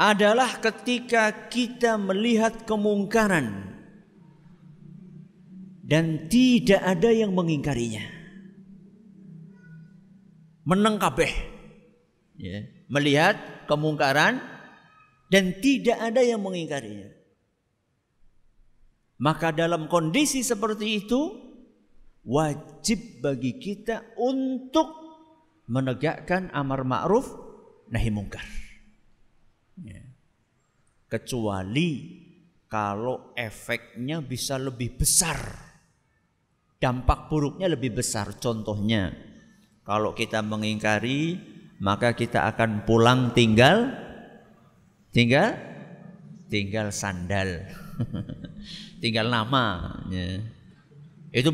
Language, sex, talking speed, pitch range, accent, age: Indonesian, male, 70 wpm, 120-195 Hz, native, 50-69